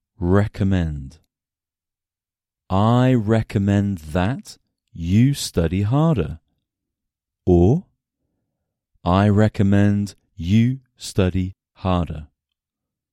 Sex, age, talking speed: male, 40-59, 60 wpm